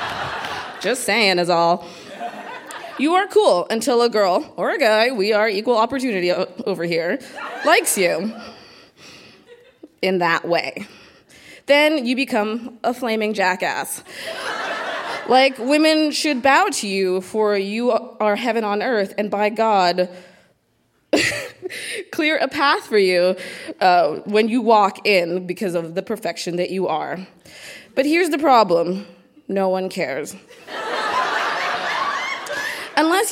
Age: 20-39